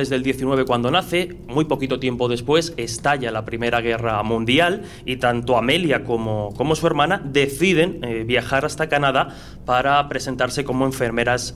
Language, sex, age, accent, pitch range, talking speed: Spanish, male, 30-49, Spanish, 120-145 Hz, 150 wpm